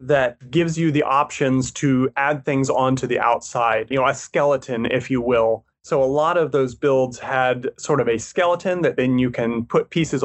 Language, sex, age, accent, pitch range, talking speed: English, male, 30-49, American, 125-150 Hz, 205 wpm